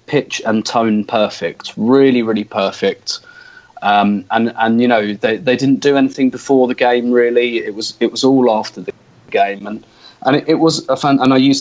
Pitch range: 105-125 Hz